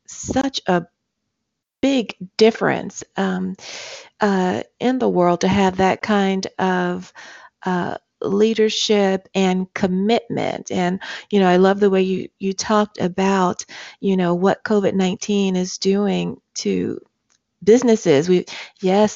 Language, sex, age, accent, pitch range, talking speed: English, female, 40-59, American, 185-215 Hz, 120 wpm